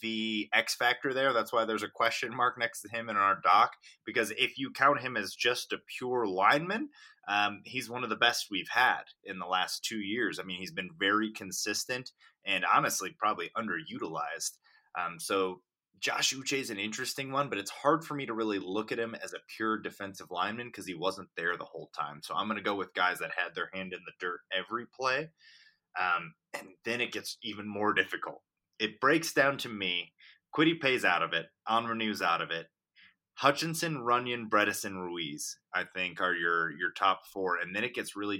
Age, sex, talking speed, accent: 20-39, male, 210 wpm, American